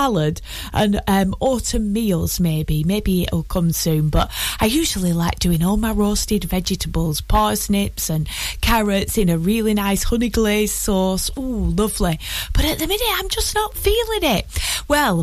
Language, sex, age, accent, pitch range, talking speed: English, female, 30-49, British, 175-260 Hz, 160 wpm